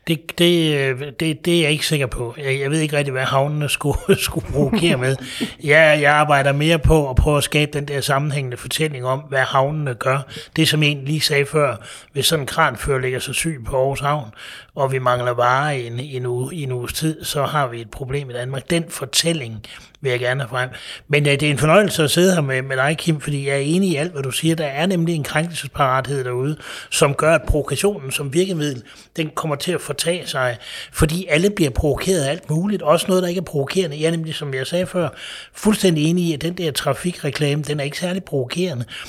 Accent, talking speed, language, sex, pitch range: native, 225 wpm, Danish, male, 130-160 Hz